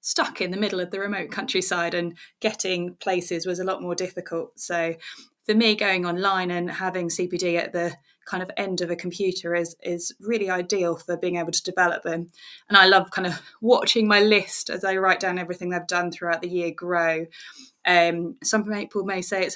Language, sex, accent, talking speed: English, female, British, 205 wpm